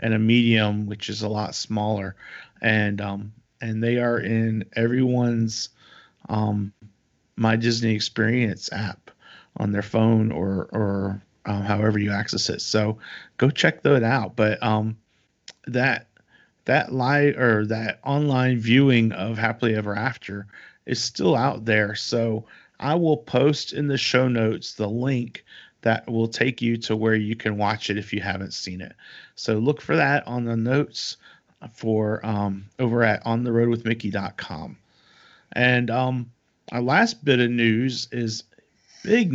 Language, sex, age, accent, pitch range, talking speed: English, male, 40-59, American, 105-120 Hz, 150 wpm